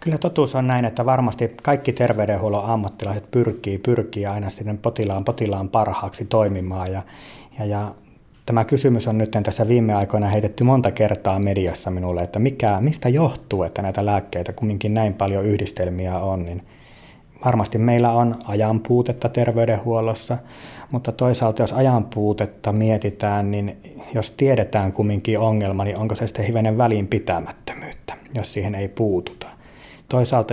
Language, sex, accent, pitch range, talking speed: Finnish, male, native, 100-120 Hz, 145 wpm